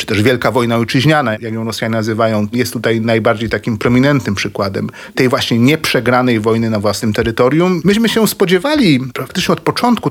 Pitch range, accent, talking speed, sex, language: 115-160 Hz, native, 165 wpm, male, Polish